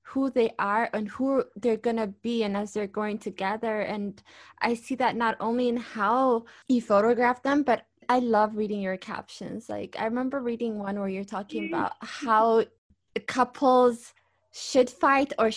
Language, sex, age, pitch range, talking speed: English, female, 20-39, 195-240 Hz, 175 wpm